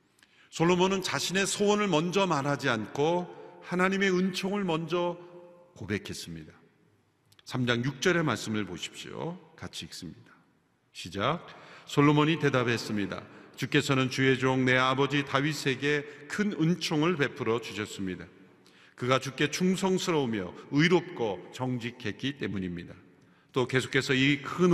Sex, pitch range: male, 110-165 Hz